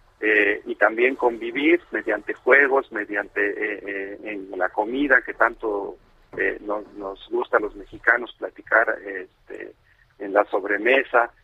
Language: Spanish